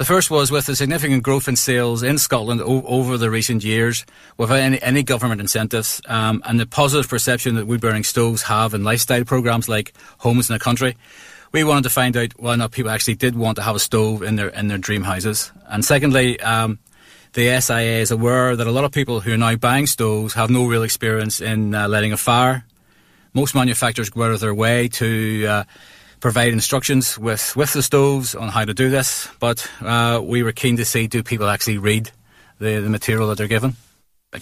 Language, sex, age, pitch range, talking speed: English, male, 30-49, 110-125 Hz, 215 wpm